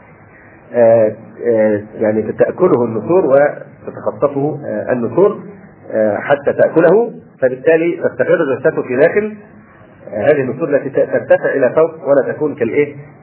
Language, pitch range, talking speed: Arabic, 130-200 Hz, 105 wpm